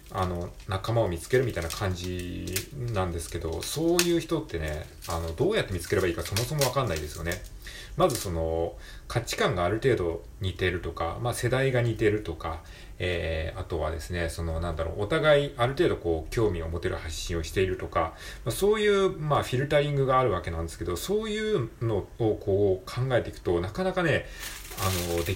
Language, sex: Japanese, male